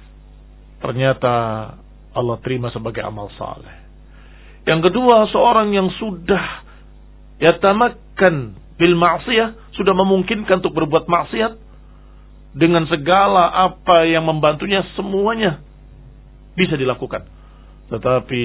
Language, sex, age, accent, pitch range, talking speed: Indonesian, male, 40-59, native, 120-170 Hz, 90 wpm